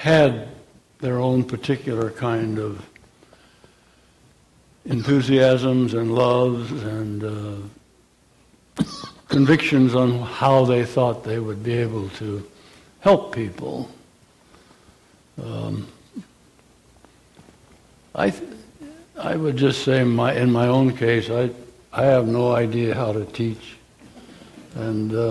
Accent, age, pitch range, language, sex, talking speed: American, 60-79, 115-135 Hz, English, male, 105 wpm